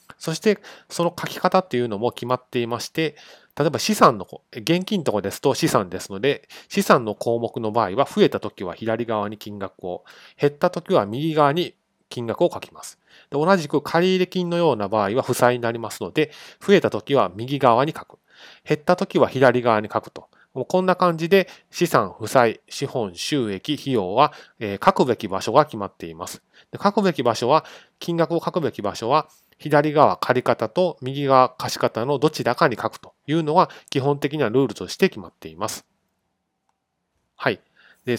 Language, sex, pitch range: Japanese, male, 115-165 Hz